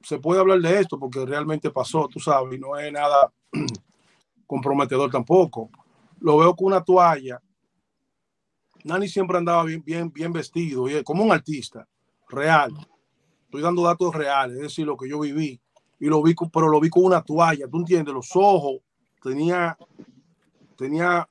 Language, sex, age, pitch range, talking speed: Spanish, male, 30-49, 150-180 Hz, 165 wpm